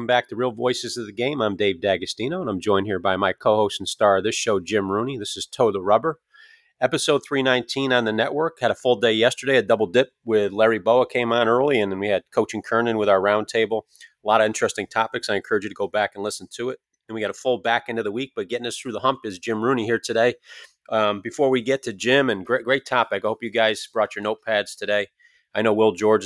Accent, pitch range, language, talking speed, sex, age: American, 105-120 Hz, English, 265 wpm, male, 30-49